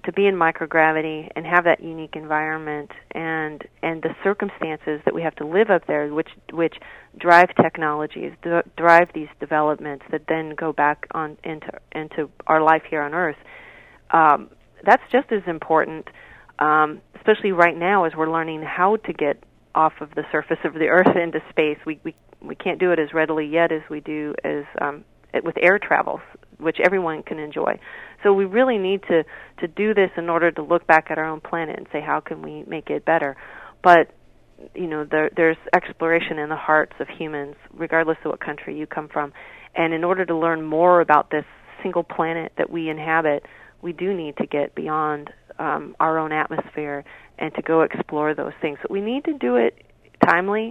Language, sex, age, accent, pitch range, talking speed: English, female, 40-59, American, 150-170 Hz, 190 wpm